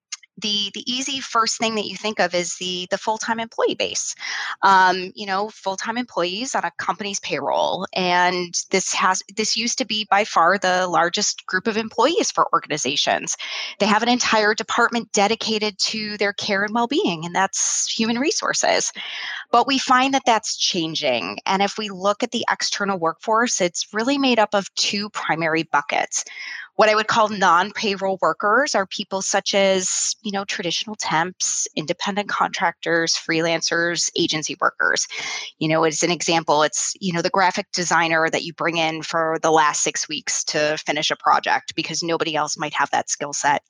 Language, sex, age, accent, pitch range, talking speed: English, female, 20-39, American, 175-225 Hz, 175 wpm